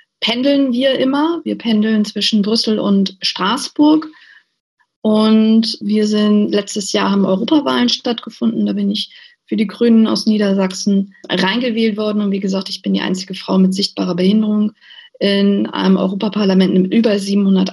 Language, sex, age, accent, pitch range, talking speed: German, female, 40-59, German, 190-225 Hz, 150 wpm